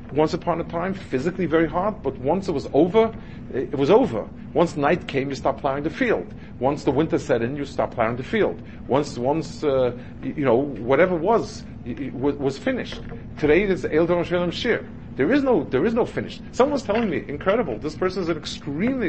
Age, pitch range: 50-69, 125-175 Hz